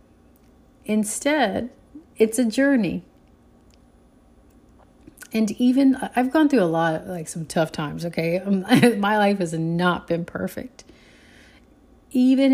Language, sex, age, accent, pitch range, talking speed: English, female, 40-59, American, 170-220 Hz, 115 wpm